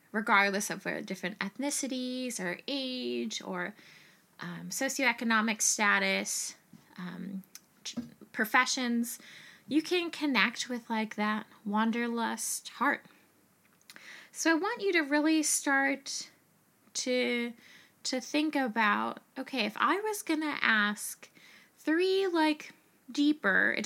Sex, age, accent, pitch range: female, 20-39, American, 200-270 Hz